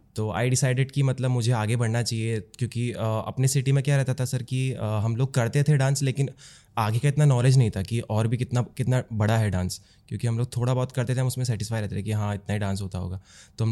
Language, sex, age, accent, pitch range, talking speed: English, male, 20-39, Indian, 105-125 Hz, 255 wpm